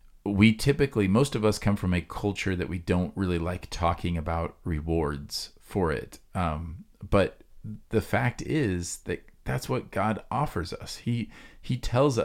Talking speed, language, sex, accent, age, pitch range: 160 wpm, English, male, American, 40-59, 90-110 Hz